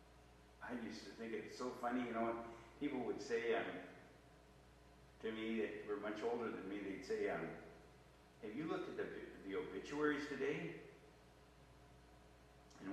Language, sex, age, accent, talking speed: English, male, 60-79, American, 155 wpm